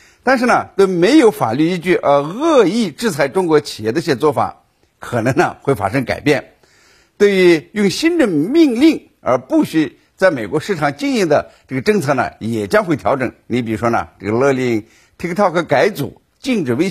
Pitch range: 135-210 Hz